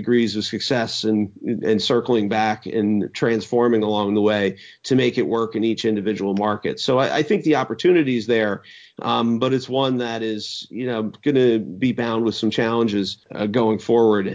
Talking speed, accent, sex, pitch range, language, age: 190 wpm, American, male, 105-120 Hz, English, 40-59